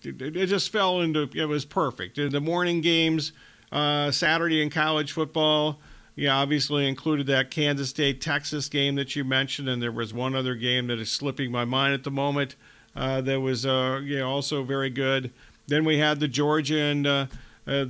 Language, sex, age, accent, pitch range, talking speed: English, male, 50-69, American, 135-155 Hz, 185 wpm